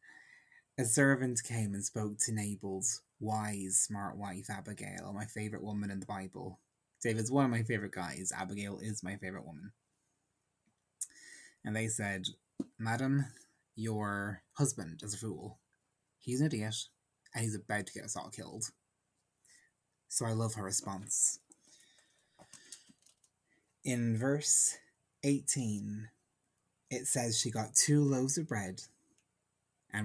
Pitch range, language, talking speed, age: 100-120 Hz, English, 130 wpm, 20-39